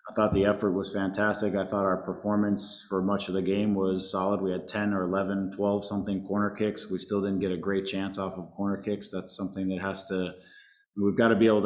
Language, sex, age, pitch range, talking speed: English, male, 20-39, 95-110 Hz, 235 wpm